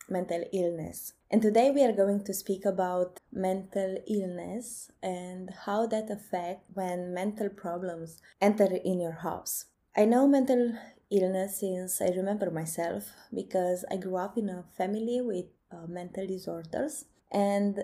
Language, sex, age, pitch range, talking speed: English, female, 20-39, 180-215 Hz, 145 wpm